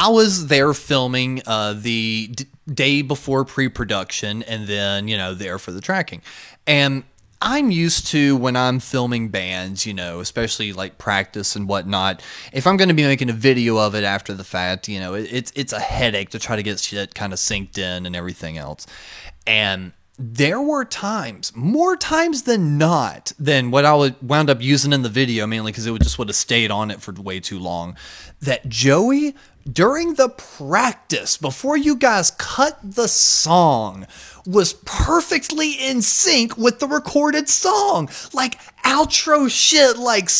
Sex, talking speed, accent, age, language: male, 175 wpm, American, 20-39, English